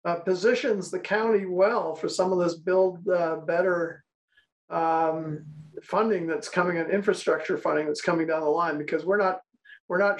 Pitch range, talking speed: 155-185 Hz, 170 wpm